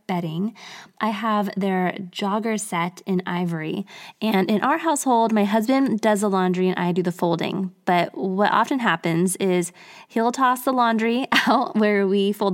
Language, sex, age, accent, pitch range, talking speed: English, female, 20-39, American, 180-220 Hz, 165 wpm